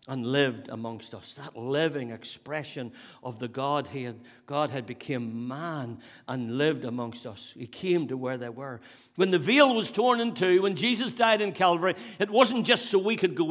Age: 60-79